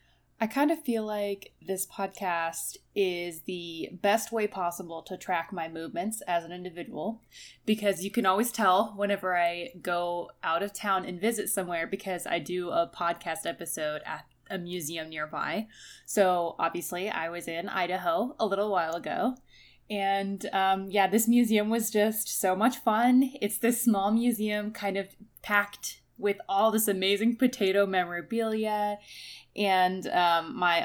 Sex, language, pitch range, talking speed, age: female, English, 180-220 Hz, 155 wpm, 20-39